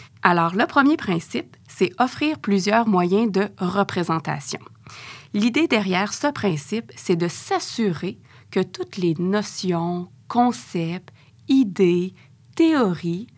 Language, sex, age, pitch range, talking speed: French, female, 30-49, 170-225 Hz, 110 wpm